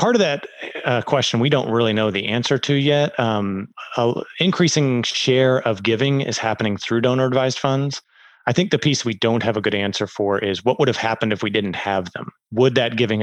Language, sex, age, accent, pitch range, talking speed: English, male, 30-49, American, 100-125 Hz, 220 wpm